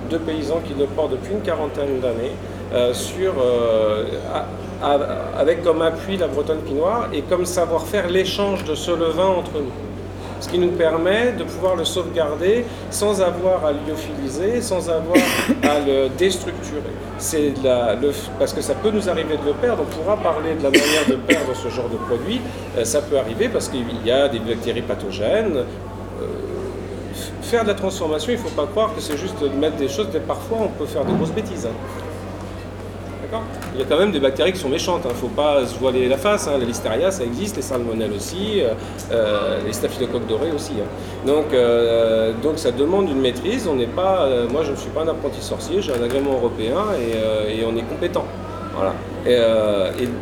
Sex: male